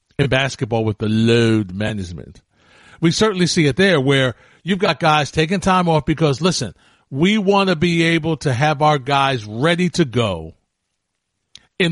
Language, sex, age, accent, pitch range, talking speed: English, male, 50-69, American, 135-175 Hz, 165 wpm